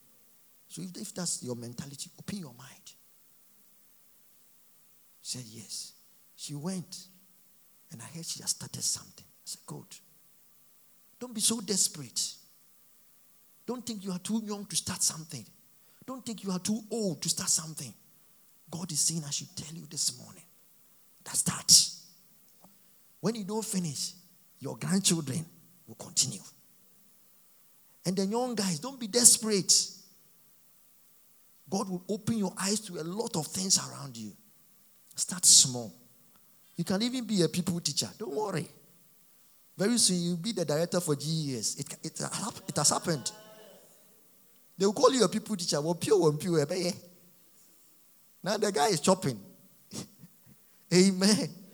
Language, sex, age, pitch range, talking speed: English, male, 50-69, 165-215 Hz, 145 wpm